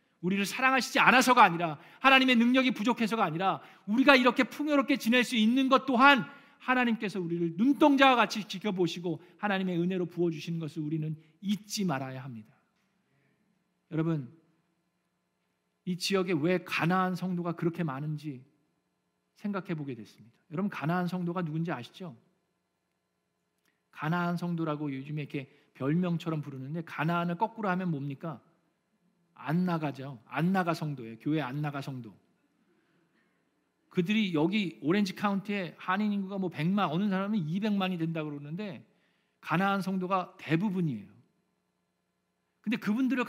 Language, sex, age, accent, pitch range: Korean, male, 40-59, native, 150-205 Hz